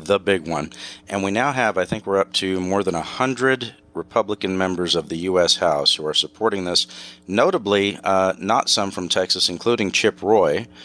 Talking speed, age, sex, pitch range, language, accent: 195 wpm, 40-59, male, 85-105 Hz, English, American